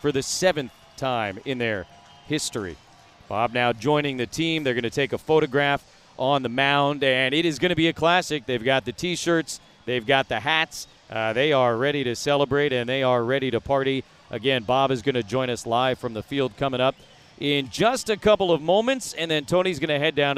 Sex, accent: male, American